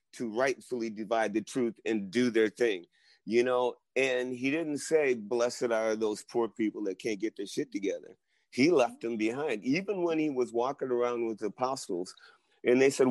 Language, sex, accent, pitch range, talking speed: English, male, American, 105-130 Hz, 190 wpm